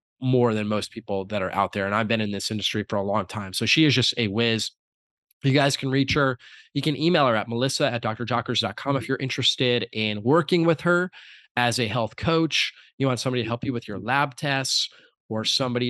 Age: 20-39